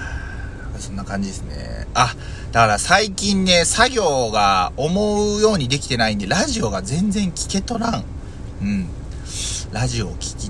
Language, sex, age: Japanese, male, 30-49